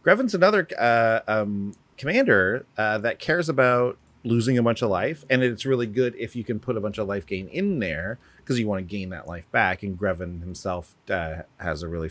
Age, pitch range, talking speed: 30-49, 95-140 Hz, 220 wpm